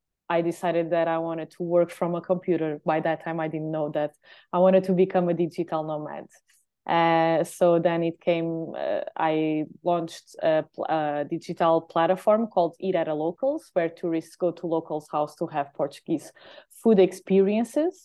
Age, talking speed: 20-39, 175 wpm